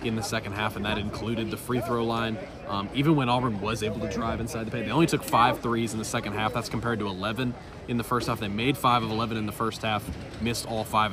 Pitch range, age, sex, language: 105-125 Hz, 20-39, male, English